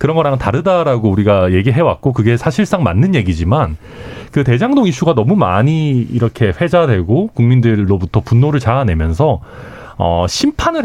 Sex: male